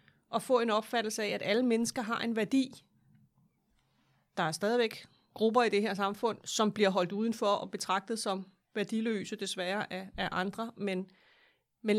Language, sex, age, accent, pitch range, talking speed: Danish, female, 30-49, native, 185-230 Hz, 165 wpm